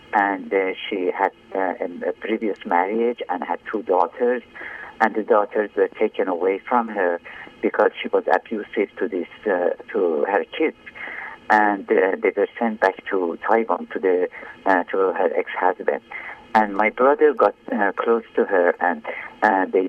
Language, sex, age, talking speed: English, male, 50-69, 165 wpm